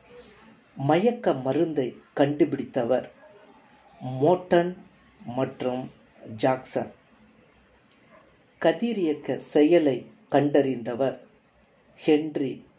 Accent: native